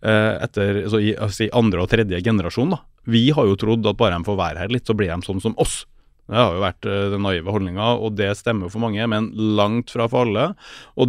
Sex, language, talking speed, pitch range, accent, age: male, English, 235 wpm, 105-125 Hz, Norwegian, 30-49